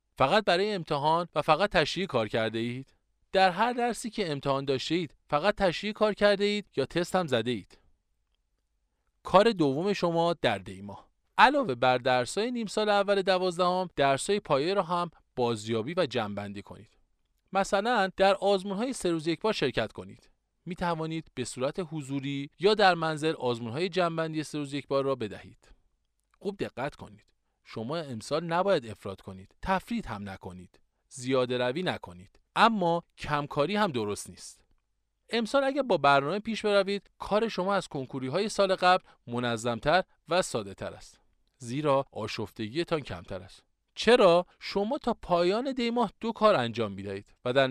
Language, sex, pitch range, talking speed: Persian, male, 120-200 Hz, 150 wpm